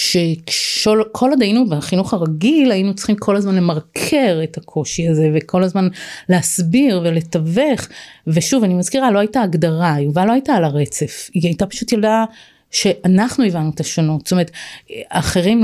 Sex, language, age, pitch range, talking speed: female, Hebrew, 30-49, 170-220 Hz, 155 wpm